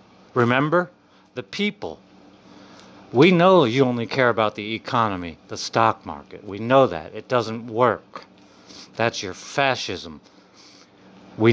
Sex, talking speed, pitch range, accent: male, 125 wpm, 100-125 Hz, American